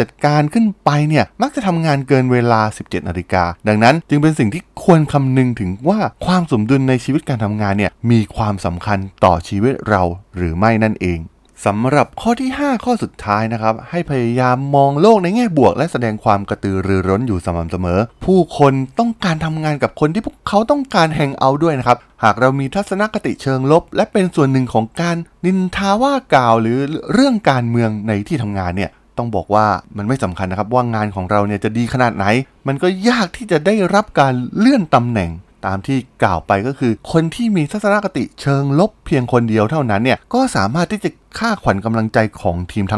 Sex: male